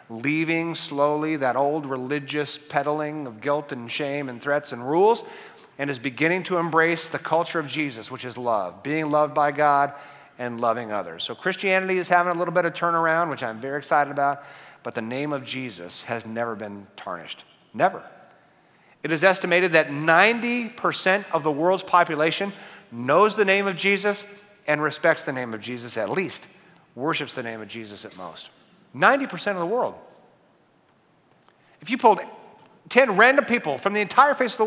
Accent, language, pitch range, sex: American, English, 130-185 Hz, male